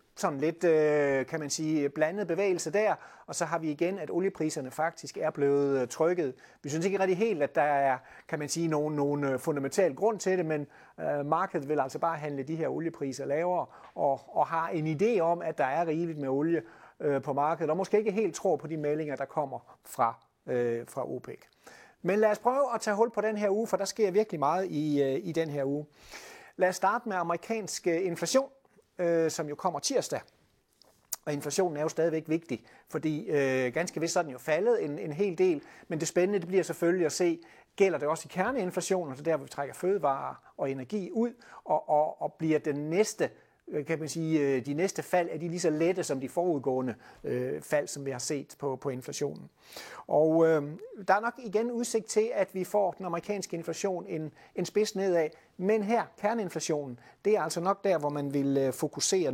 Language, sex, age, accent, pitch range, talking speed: Danish, male, 30-49, native, 145-190 Hz, 200 wpm